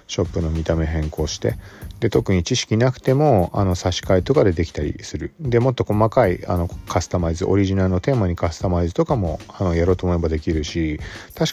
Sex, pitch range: male, 85-115 Hz